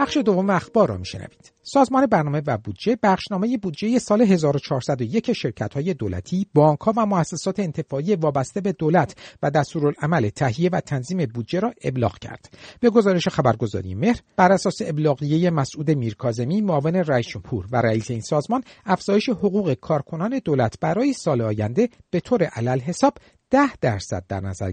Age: 50-69